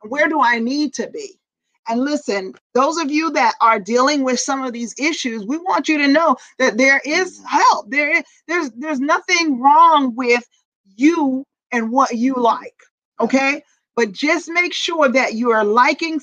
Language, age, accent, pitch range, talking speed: English, 40-59, American, 235-305 Hz, 180 wpm